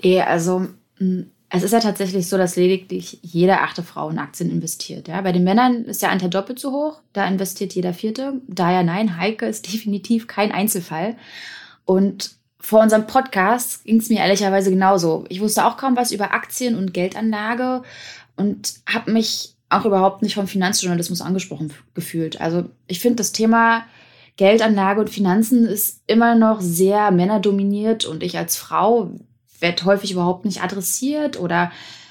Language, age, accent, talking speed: German, 20-39, German, 165 wpm